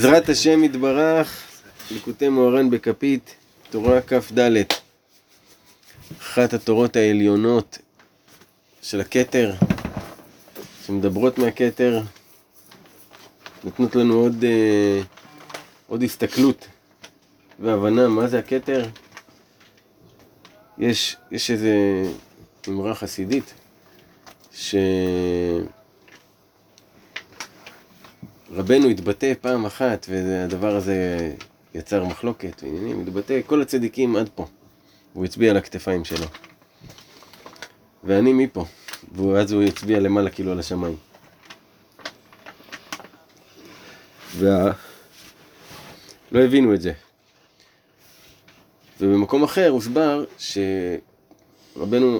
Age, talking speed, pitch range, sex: 30-49, 75 wpm, 95-125 Hz, male